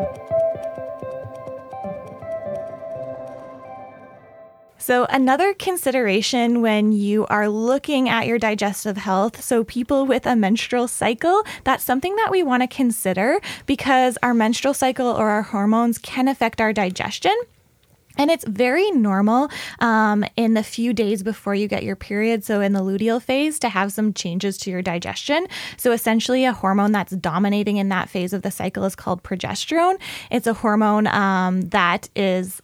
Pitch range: 195-250 Hz